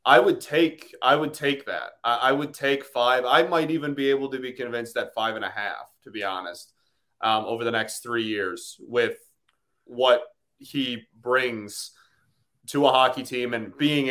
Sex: male